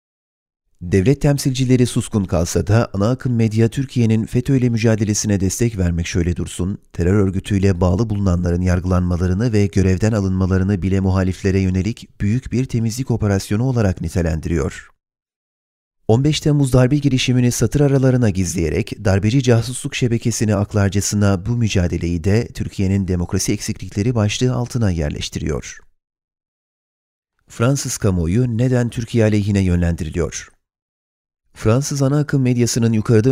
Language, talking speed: Turkish, 115 wpm